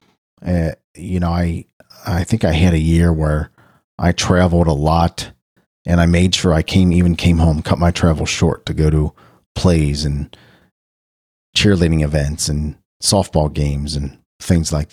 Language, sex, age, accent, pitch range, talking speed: English, male, 40-59, American, 80-100 Hz, 165 wpm